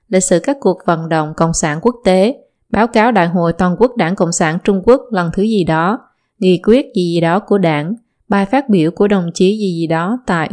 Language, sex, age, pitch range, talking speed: Vietnamese, female, 20-39, 175-220 Hz, 240 wpm